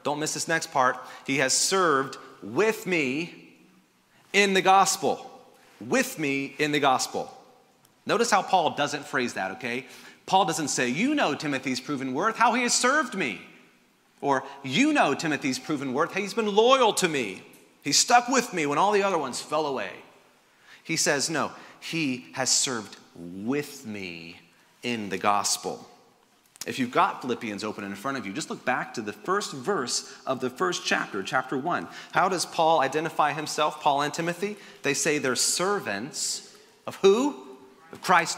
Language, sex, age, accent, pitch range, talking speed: English, male, 30-49, American, 130-195 Hz, 170 wpm